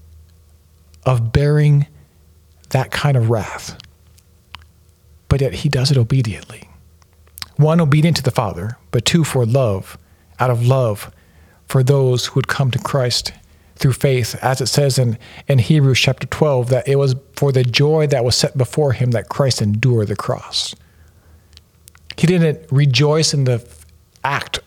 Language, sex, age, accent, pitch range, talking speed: English, male, 50-69, American, 85-140 Hz, 155 wpm